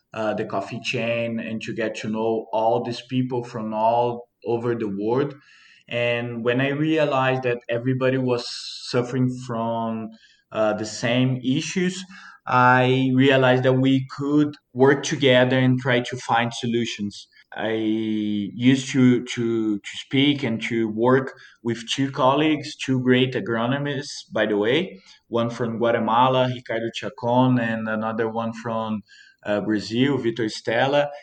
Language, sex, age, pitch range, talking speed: English, male, 20-39, 115-130 Hz, 140 wpm